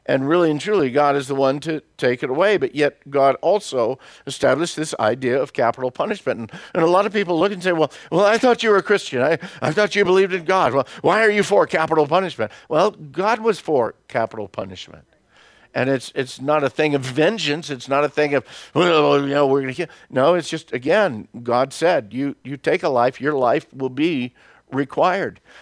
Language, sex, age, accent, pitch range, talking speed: English, male, 50-69, American, 135-175 Hz, 225 wpm